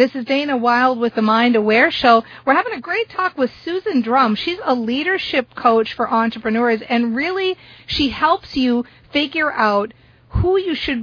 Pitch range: 210-255 Hz